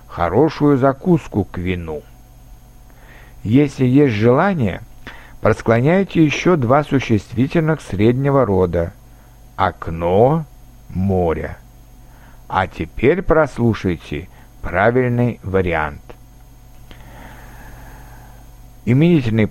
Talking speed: 65 wpm